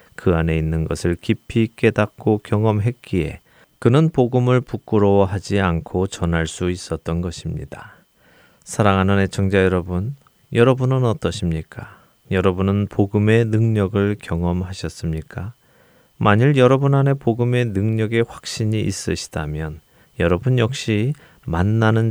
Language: Korean